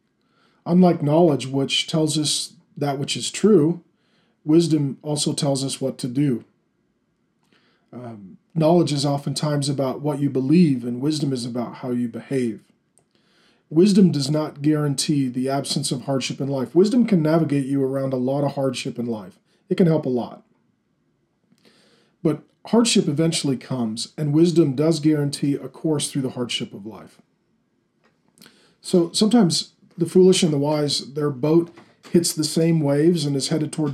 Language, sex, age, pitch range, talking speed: English, male, 40-59, 140-170 Hz, 155 wpm